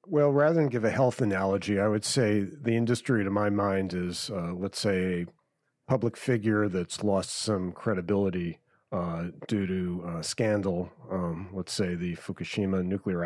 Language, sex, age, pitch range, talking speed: English, male, 40-59, 95-120 Hz, 170 wpm